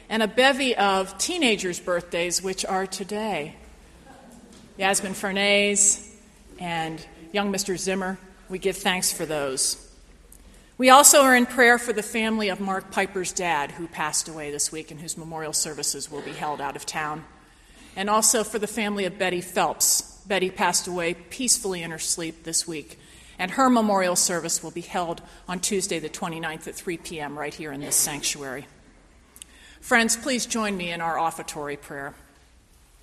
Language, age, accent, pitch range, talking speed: English, 40-59, American, 165-210 Hz, 165 wpm